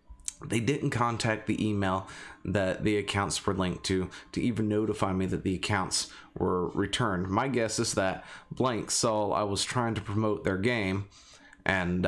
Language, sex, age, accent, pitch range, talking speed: English, male, 30-49, American, 95-110 Hz, 170 wpm